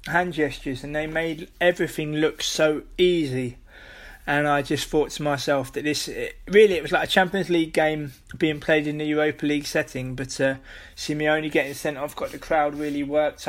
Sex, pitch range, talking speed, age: male, 145-160 Hz, 205 wpm, 20-39